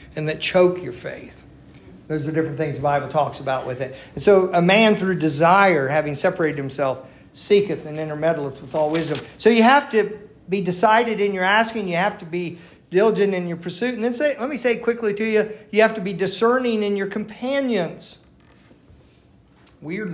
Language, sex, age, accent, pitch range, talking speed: English, male, 50-69, American, 150-200 Hz, 195 wpm